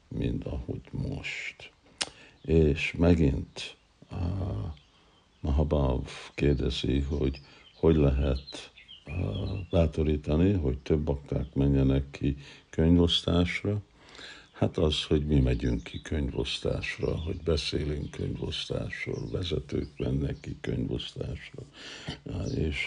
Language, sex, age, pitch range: Hungarian, male, 60-79, 70-85 Hz